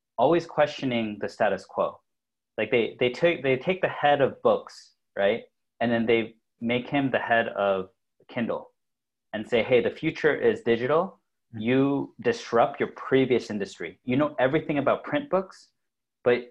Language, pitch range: English, 115-155 Hz